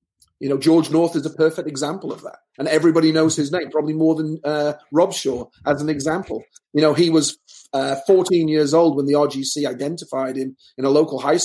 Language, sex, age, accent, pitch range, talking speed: English, male, 30-49, British, 135-160 Hz, 215 wpm